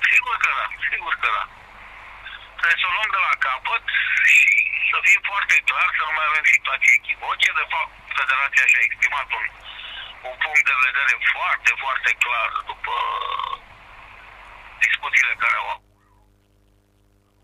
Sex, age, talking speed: male, 50-69, 135 wpm